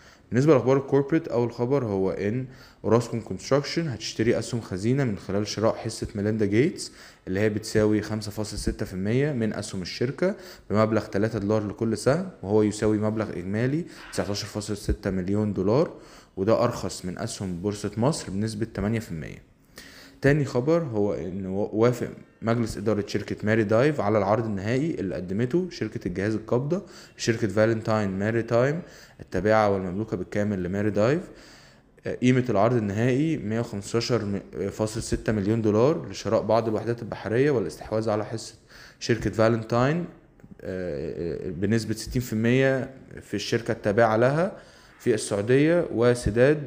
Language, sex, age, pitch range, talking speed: Arabic, male, 20-39, 105-125 Hz, 130 wpm